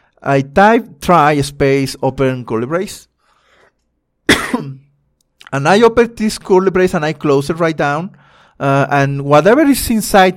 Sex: male